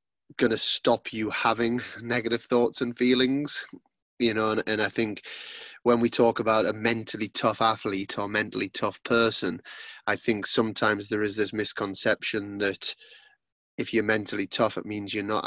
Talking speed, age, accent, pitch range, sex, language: 165 wpm, 20-39, British, 105-115 Hz, male, English